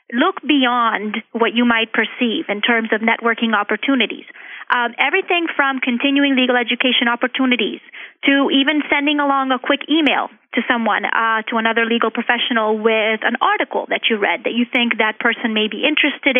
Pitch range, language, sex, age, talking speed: 225-265 Hz, English, female, 30-49, 170 wpm